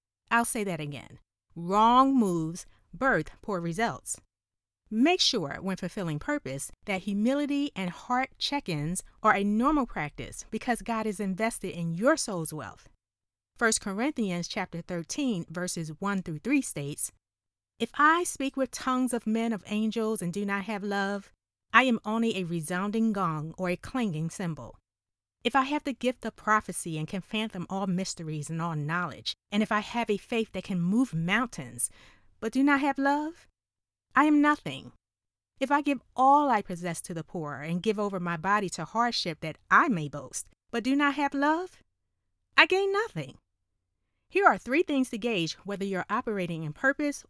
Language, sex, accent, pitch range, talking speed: English, female, American, 160-240 Hz, 175 wpm